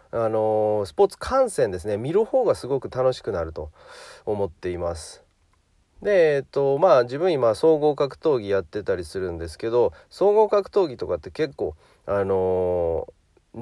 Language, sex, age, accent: Japanese, male, 40-59, native